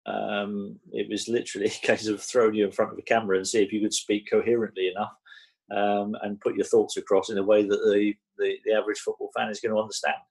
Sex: male